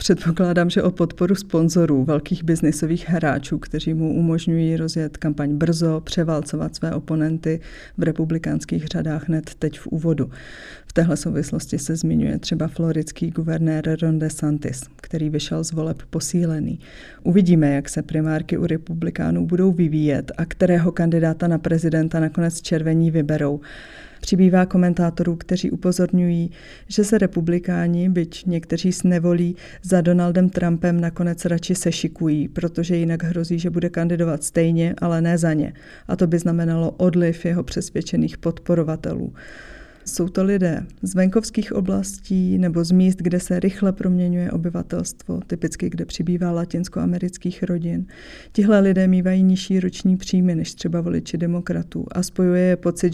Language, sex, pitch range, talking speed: Czech, female, 160-180 Hz, 140 wpm